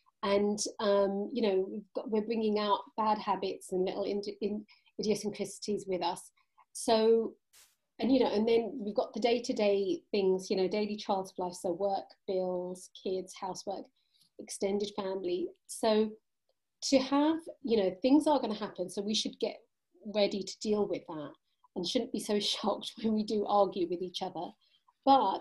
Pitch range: 195-255 Hz